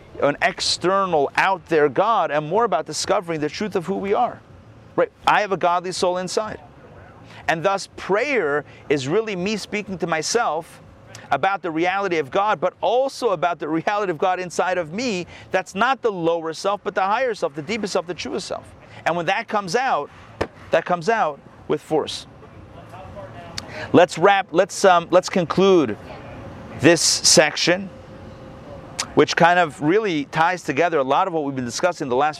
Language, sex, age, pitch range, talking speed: English, male, 40-59, 155-200 Hz, 175 wpm